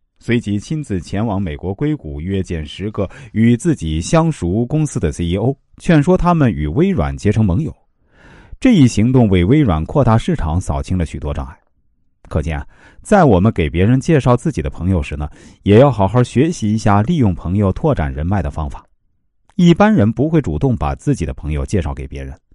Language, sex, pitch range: Chinese, male, 85-125 Hz